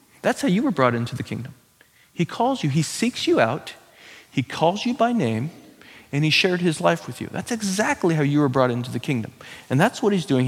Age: 40-59